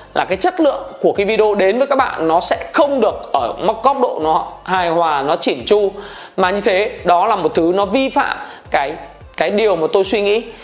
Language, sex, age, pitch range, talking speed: Vietnamese, male, 20-39, 175-240 Hz, 230 wpm